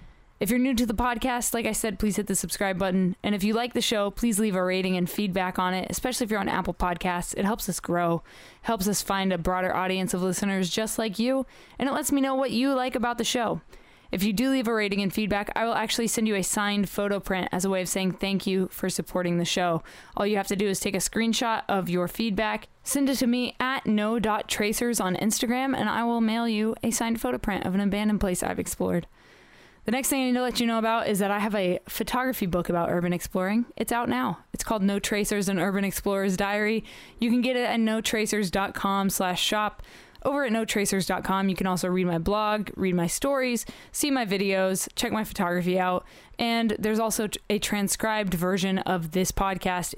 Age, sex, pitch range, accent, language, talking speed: 20-39, female, 190-230 Hz, American, English, 225 wpm